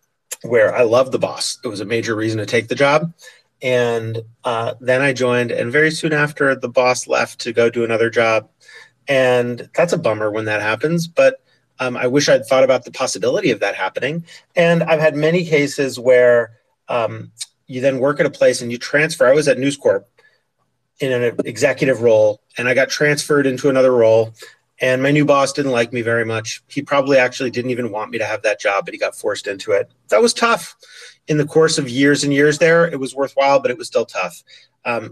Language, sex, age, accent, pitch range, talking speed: English, male, 30-49, American, 120-150 Hz, 220 wpm